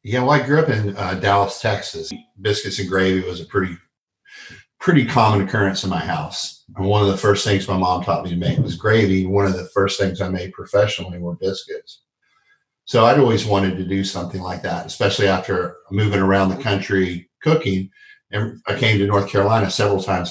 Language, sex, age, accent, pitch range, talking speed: English, male, 40-59, American, 95-110 Hz, 205 wpm